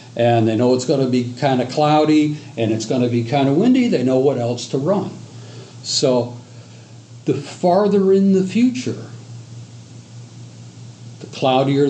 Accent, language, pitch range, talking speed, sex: American, English, 120-145 Hz, 160 wpm, male